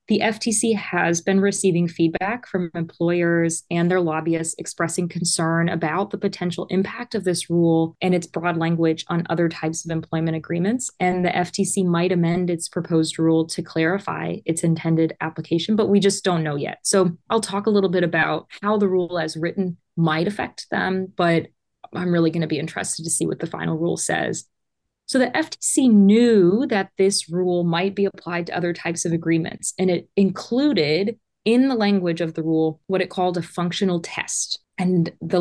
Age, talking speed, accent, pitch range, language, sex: 20-39, 185 wpm, American, 170-200 Hz, English, female